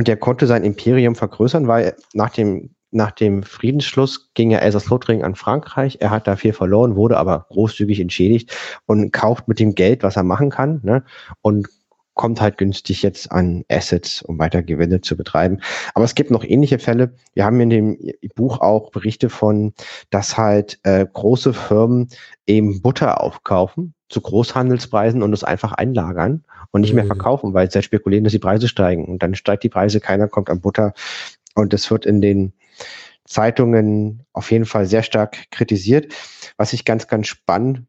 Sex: male